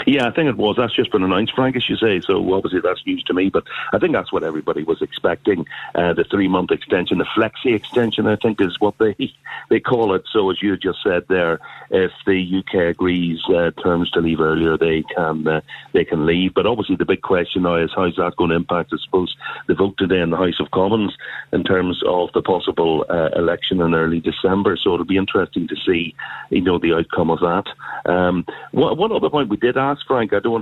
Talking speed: 235 wpm